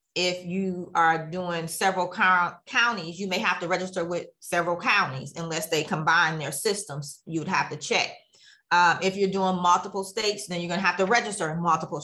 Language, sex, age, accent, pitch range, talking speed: English, female, 30-49, American, 170-195 Hz, 185 wpm